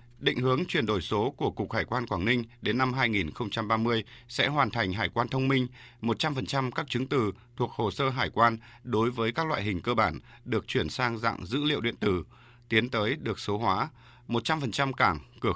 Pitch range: 105-130 Hz